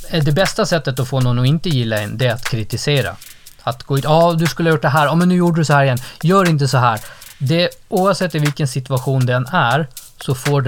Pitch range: 120-150 Hz